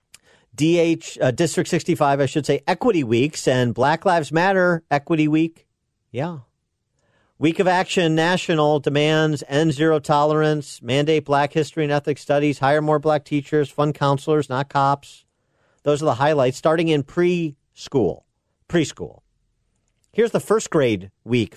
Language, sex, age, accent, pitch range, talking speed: English, male, 40-59, American, 110-155 Hz, 140 wpm